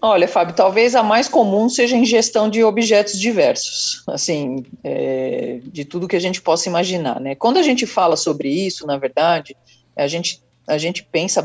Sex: female